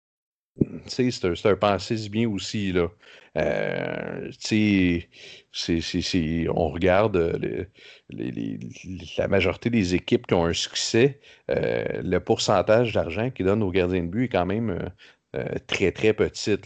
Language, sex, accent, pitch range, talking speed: French, male, Canadian, 85-105 Hz, 150 wpm